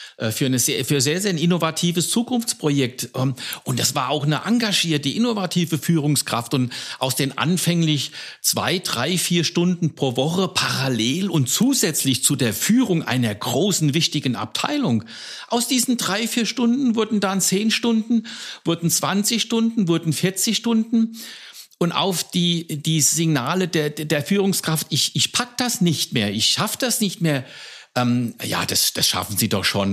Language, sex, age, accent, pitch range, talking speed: German, male, 60-79, German, 145-205 Hz, 155 wpm